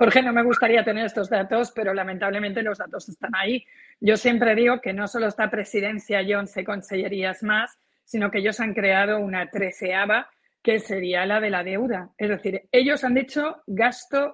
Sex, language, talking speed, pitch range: female, Spanish, 185 wpm, 205-250 Hz